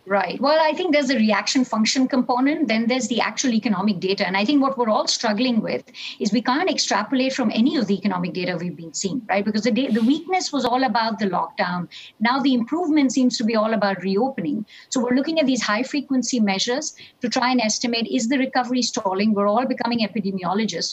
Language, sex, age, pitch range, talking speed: English, female, 50-69, 200-255 Hz, 220 wpm